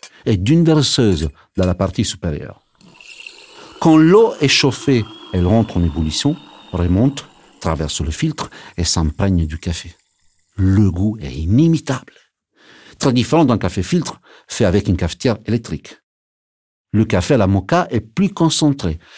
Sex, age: male, 60-79